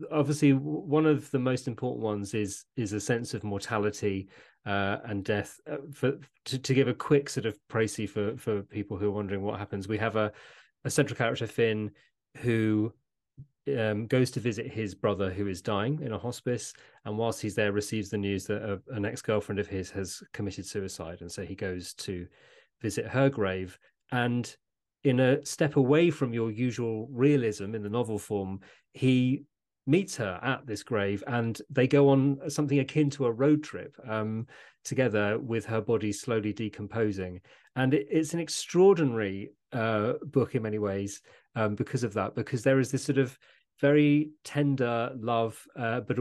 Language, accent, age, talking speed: English, British, 30-49, 175 wpm